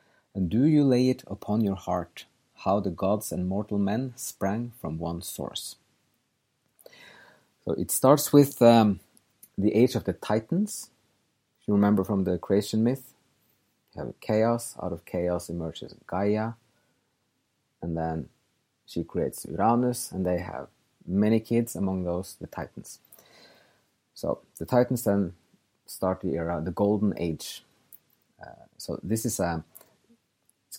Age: 30-49